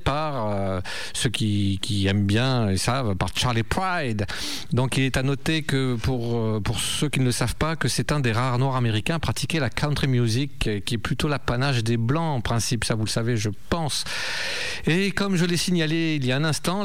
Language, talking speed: French, 220 wpm